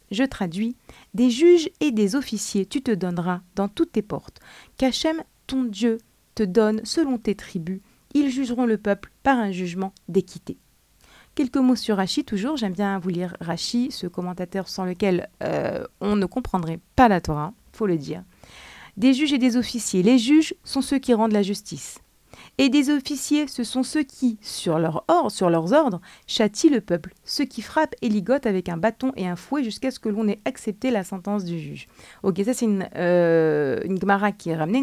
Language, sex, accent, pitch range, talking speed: French, female, French, 190-265 Hz, 205 wpm